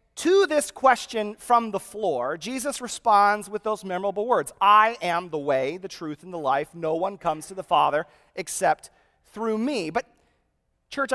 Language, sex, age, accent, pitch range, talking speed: English, male, 30-49, American, 195-260 Hz, 170 wpm